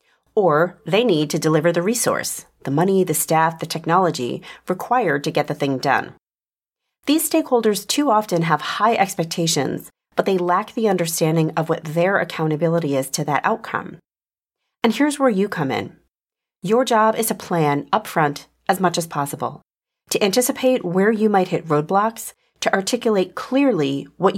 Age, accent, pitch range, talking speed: 40-59, American, 155-210 Hz, 160 wpm